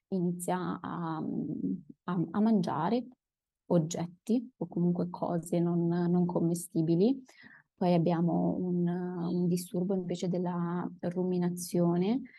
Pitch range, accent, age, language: 175-190 Hz, native, 20-39, Italian